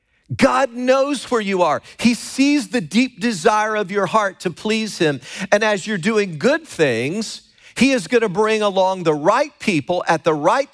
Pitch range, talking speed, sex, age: 155-215 Hz, 190 wpm, male, 40-59